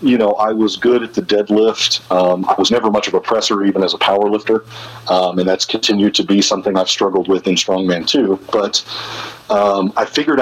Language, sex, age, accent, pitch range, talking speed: English, male, 40-59, American, 95-105 Hz, 220 wpm